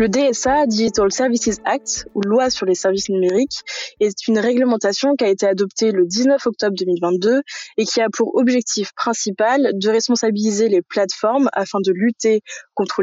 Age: 20-39